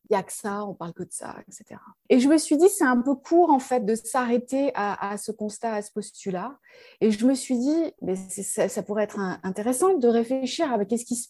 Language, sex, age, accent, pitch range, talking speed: French, female, 20-39, French, 215-280 Hz, 255 wpm